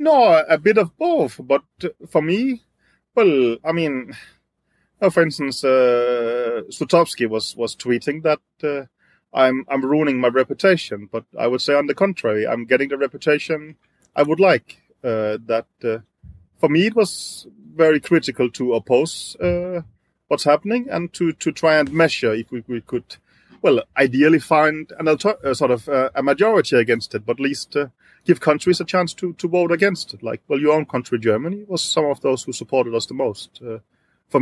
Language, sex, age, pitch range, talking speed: English, male, 30-49, 120-170 Hz, 185 wpm